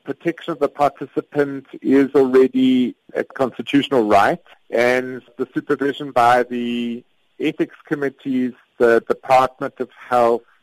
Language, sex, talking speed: English, male, 115 wpm